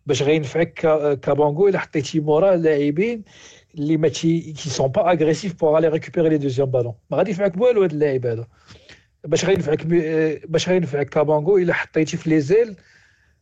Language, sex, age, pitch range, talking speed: Arabic, male, 50-69, 140-165 Hz, 135 wpm